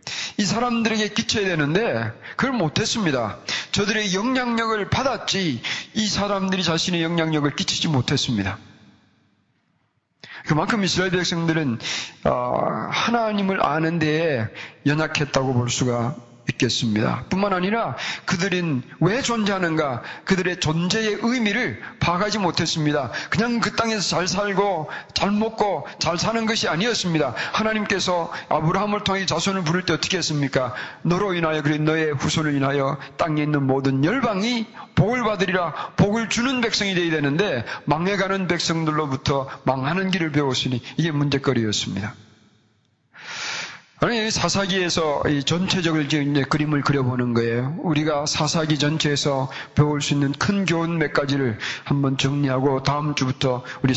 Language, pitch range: Korean, 135-195 Hz